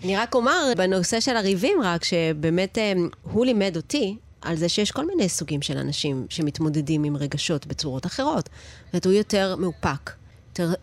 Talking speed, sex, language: 170 wpm, female, Hebrew